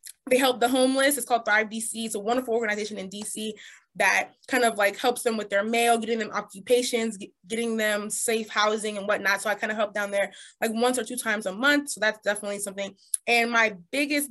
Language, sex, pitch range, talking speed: English, female, 205-245 Hz, 225 wpm